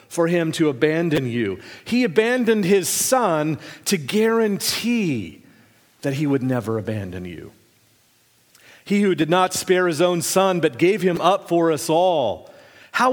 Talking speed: 150 wpm